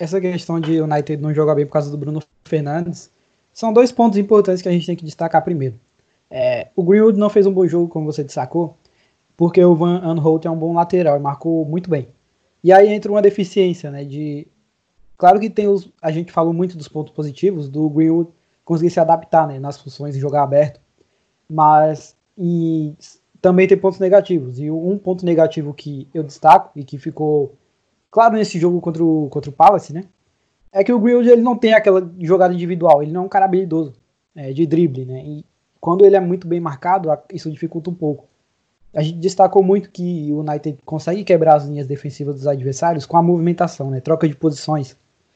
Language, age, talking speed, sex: Portuguese, 20-39, 200 wpm, male